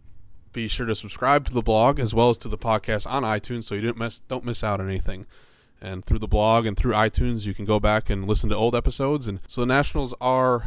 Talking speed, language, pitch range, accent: 240 wpm, English, 105-120 Hz, American